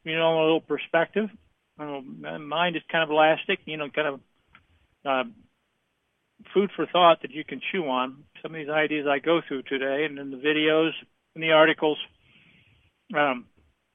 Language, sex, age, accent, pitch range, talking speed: English, male, 50-69, American, 150-185 Hz, 175 wpm